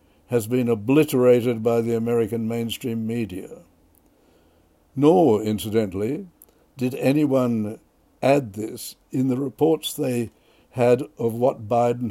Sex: male